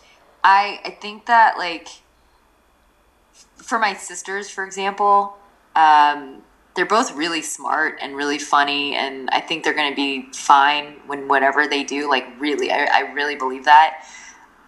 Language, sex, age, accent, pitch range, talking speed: English, female, 20-39, American, 145-200 Hz, 150 wpm